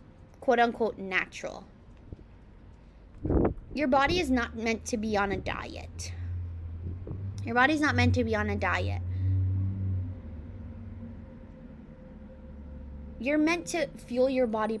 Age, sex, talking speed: 20-39, female, 115 wpm